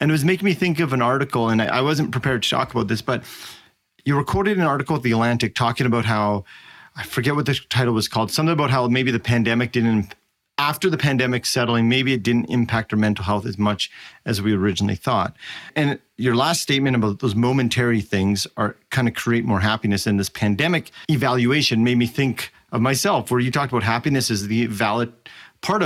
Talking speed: 215 wpm